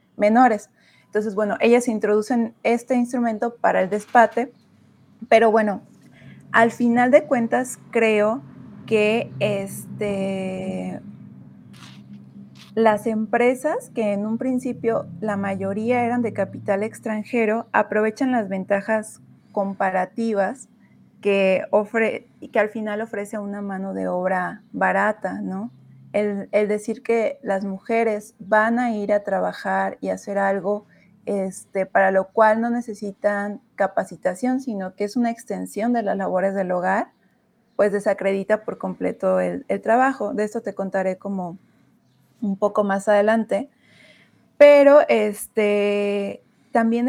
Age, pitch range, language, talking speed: 30-49, 195-230 Hz, Spanish, 125 wpm